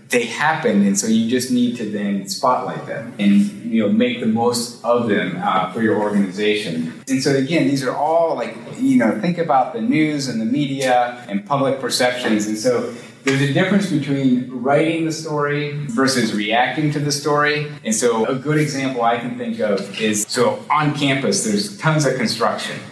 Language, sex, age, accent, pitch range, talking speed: English, male, 30-49, American, 120-160 Hz, 190 wpm